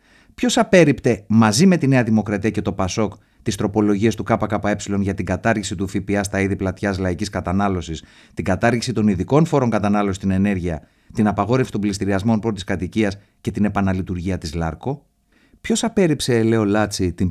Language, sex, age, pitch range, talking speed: Greek, male, 30-49, 90-110 Hz, 165 wpm